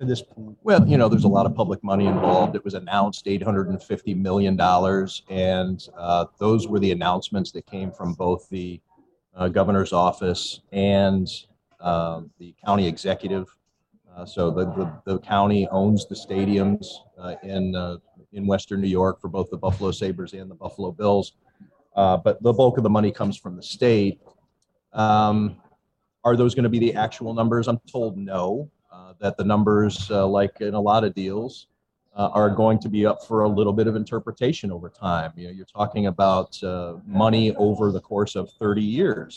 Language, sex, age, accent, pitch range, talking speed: English, male, 30-49, American, 95-105 Hz, 185 wpm